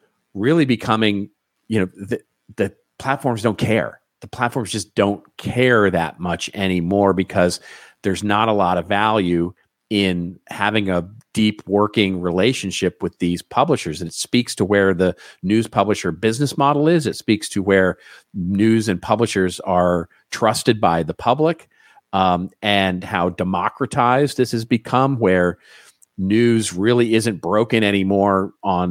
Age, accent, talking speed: 40-59, American, 145 wpm